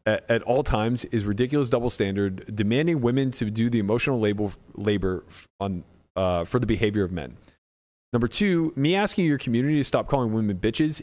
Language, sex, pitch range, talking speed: English, male, 100-130 Hz, 180 wpm